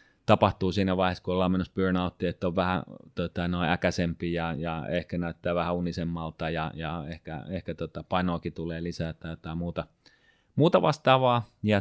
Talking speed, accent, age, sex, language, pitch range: 170 wpm, native, 30-49, male, Finnish, 90-115 Hz